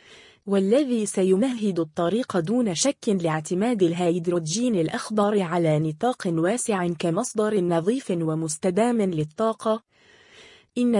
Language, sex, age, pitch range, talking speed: Arabic, female, 20-39, 170-230 Hz, 85 wpm